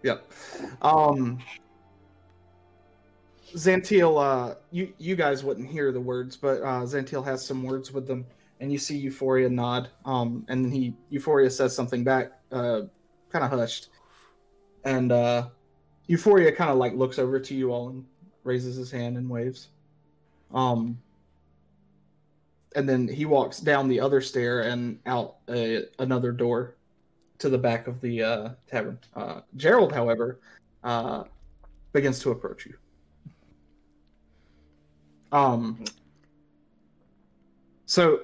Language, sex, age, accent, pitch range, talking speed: English, male, 30-49, American, 95-135 Hz, 130 wpm